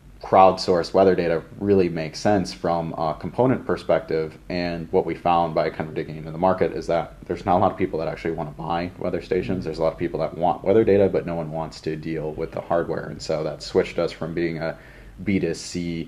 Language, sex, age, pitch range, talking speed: English, male, 30-49, 80-90 Hz, 230 wpm